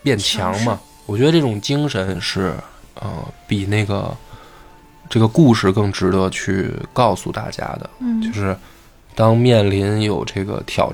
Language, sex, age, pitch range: Chinese, male, 20-39, 100-120 Hz